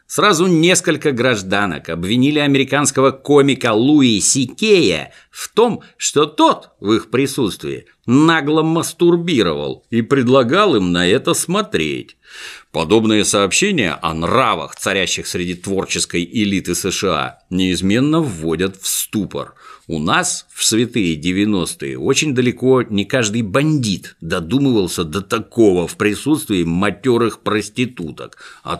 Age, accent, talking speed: 60-79, native, 115 wpm